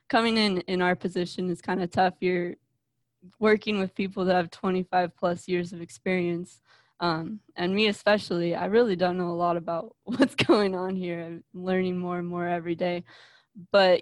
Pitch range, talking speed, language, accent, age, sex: 175-190 Hz, 185 wpm, English, American, 20-39, female